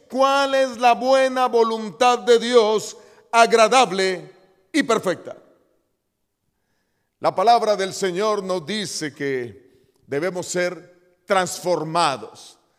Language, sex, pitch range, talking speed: Spanish, male, 155-245 Hz, 95 wpm